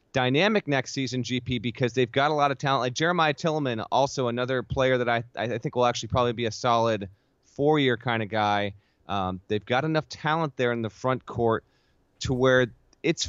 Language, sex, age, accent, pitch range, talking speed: English, male, 30-49, American, 115-140 Hz, 200 wpm